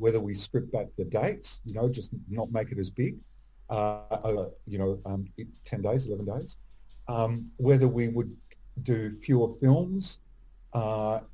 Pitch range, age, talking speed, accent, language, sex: 105-130 Hz, 50-69, 160 wpm, Australian, English, male